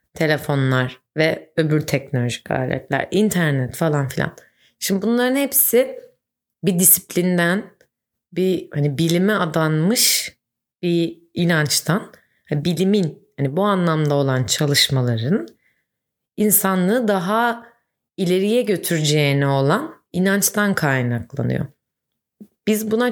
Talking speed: 90 wpm